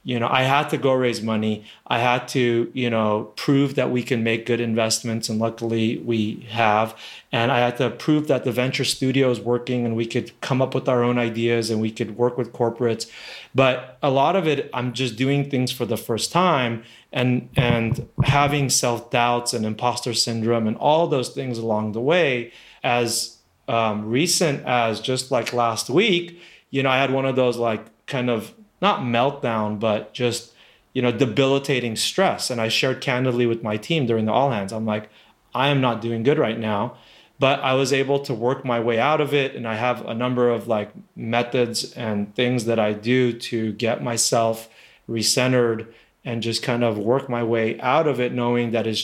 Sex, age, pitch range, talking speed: male, 30-49, 115-130 Hz, 200 wpm